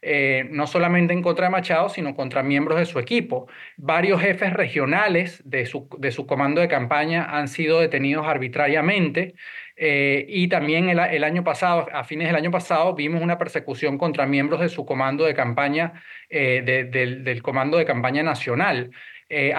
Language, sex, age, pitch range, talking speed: Spanish, male, 30-49, 145-185 Hz, 180 wpm